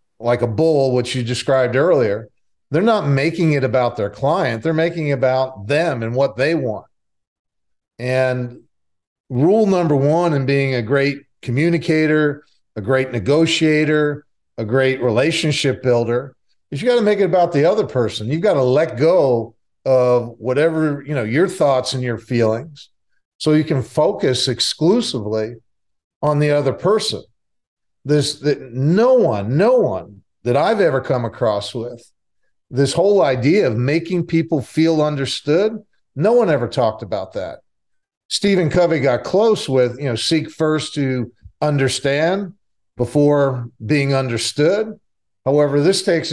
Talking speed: 150 wpm